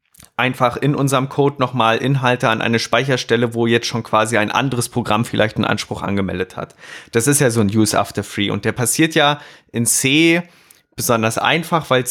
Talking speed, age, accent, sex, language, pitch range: 190 wpm, 20-39, German, male, German, 110-135 Hz